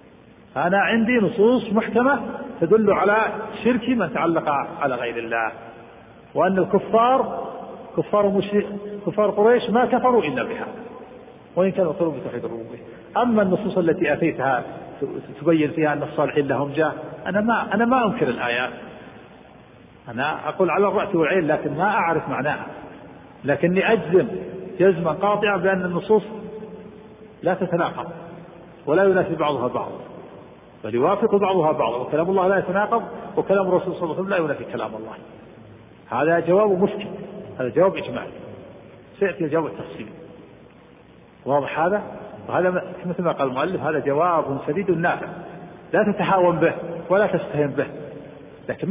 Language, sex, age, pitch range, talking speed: Arabic, male, 50-69, 155-210 Hz, 130 wpm